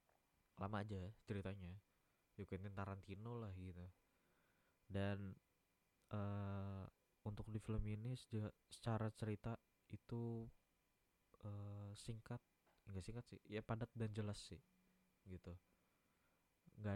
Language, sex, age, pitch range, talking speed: Indonesian, male, 20-39, 95-115 Hz, 105 wpm